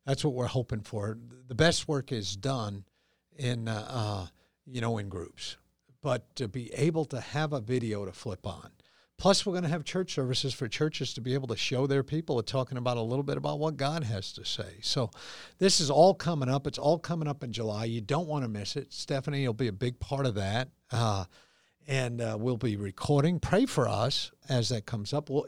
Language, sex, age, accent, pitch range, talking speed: English, male, 50-69, American, 120-160 Hz, 230 wpm